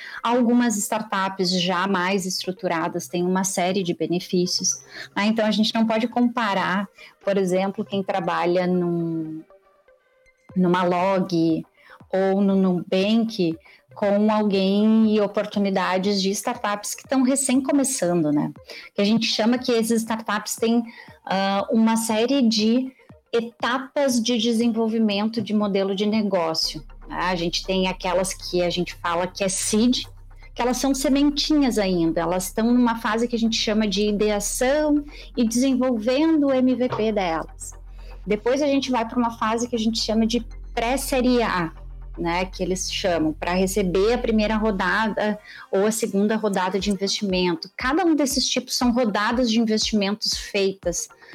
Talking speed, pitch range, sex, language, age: 145 wpm, 185-235 Hz, female, Portuguese, 30-49